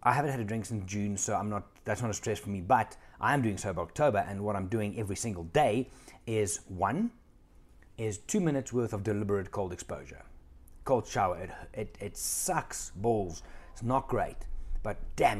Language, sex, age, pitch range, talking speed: English, male, 30-49, 95-120 Hz, 200 wpm